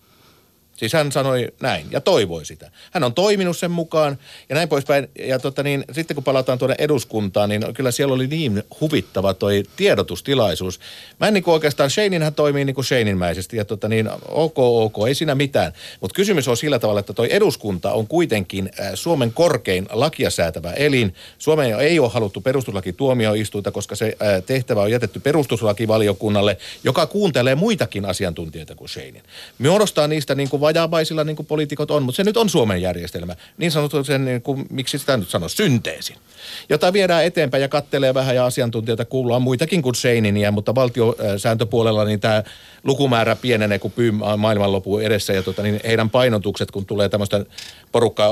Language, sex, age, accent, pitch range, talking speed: Finnish, male, 50-69, native, 105-145 Hz, 165 wpm